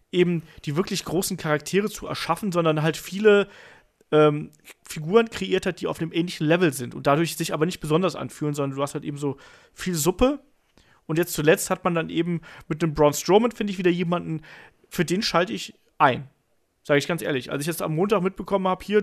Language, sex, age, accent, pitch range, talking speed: German, male, 30-49, German, 155-200 Hz, 210 wpm